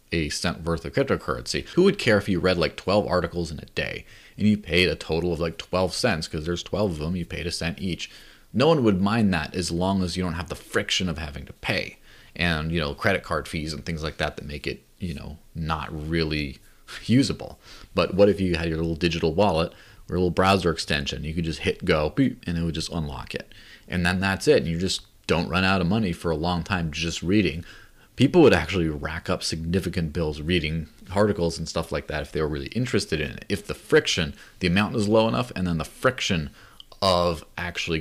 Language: English